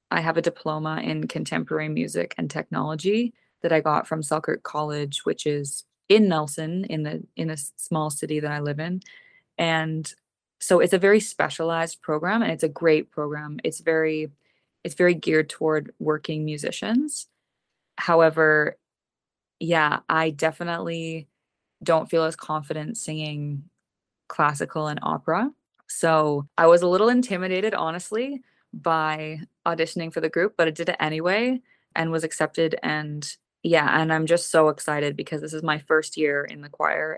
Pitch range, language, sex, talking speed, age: 150-170 Hz, English, female, 155 wpm, 20-39